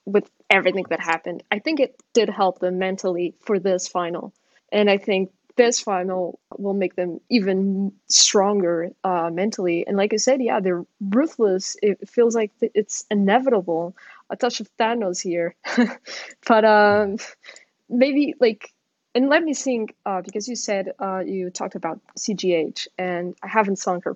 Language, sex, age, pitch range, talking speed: English, female, 20-39, 185-220 Hz, 160 wpm